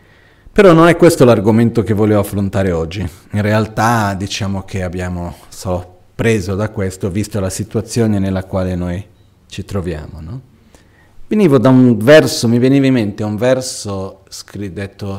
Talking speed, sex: 155 wpm, male